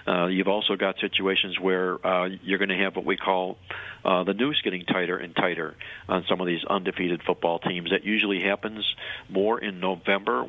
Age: 50-69